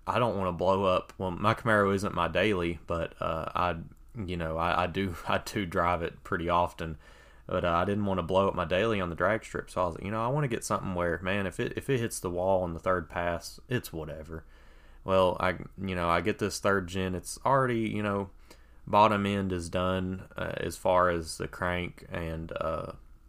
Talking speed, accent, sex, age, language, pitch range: 230 wpm, American, male, 20-39, English, 80-95 Hz